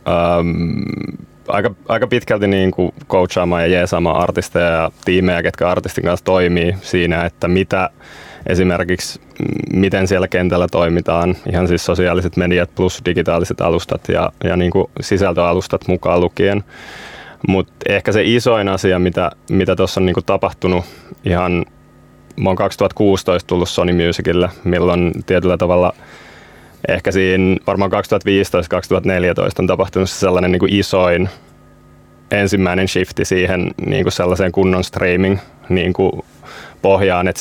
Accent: native